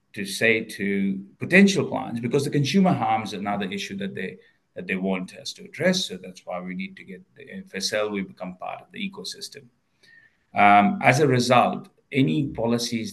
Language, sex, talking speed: English, male, 185 wpm